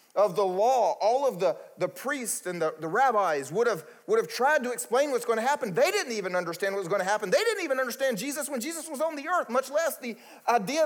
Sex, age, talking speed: male, 30-49, 260 wpm